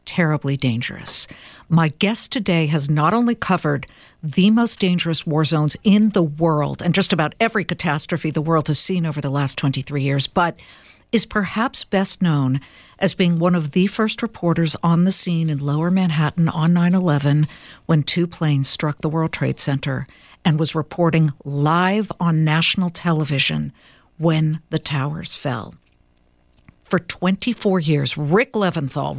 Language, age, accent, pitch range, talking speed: English, 50-69, American, 150-195 Hz, 155 wpm